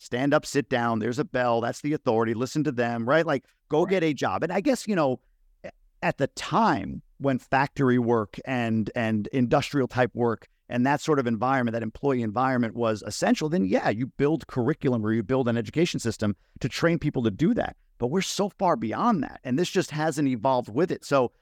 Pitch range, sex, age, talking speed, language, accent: 115-150 Hz, male, 50-69, 215 wpm, English, American